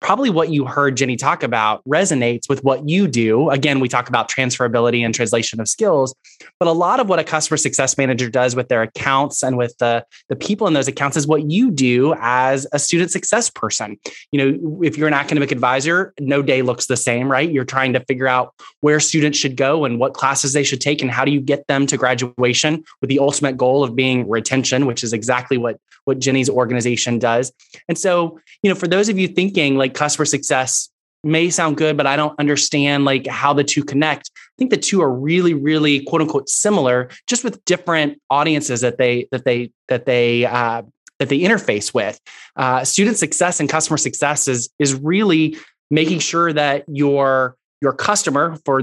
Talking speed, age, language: 205 wpm, 20-39, English